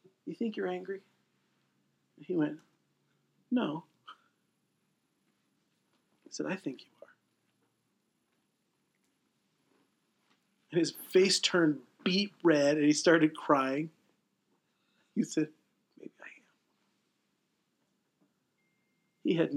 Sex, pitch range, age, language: male, 155-210 Hz, 40-59, English